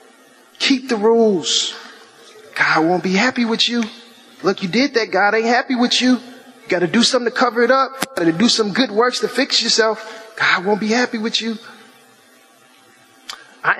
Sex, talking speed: male, 185 wpm